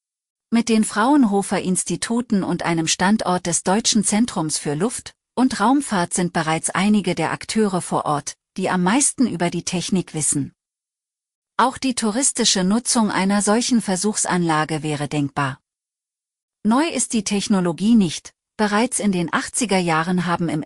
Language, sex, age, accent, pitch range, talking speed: German, female, 40-59, German, 165-225 Hz, 140 wpm